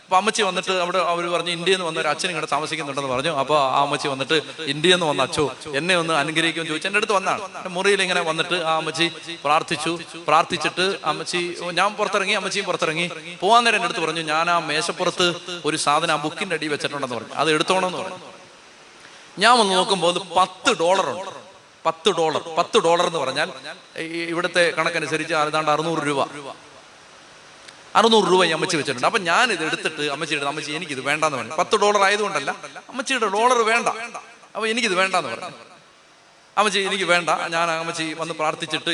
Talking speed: 155 wpm